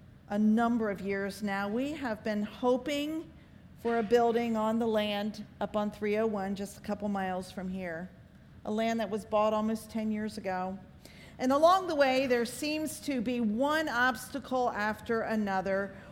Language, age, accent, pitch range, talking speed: English, 40-59, American, 210-275 Hz, 170 wpm